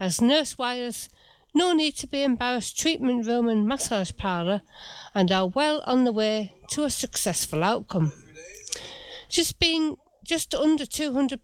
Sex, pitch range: female, 210-280 Hz